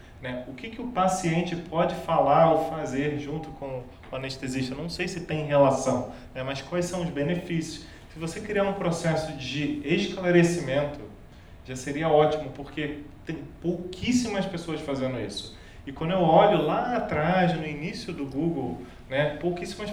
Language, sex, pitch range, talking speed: Portuguese, male, 140-175 Hz, 160 wpm